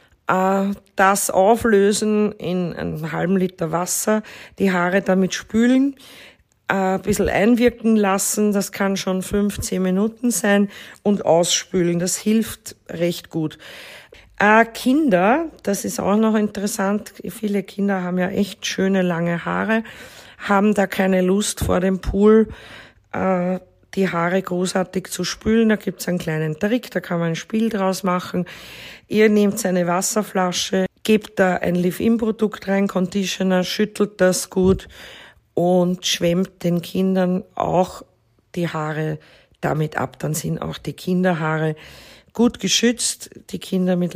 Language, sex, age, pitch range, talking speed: German, female, 40-59, 175-205 Hz, 135 wpm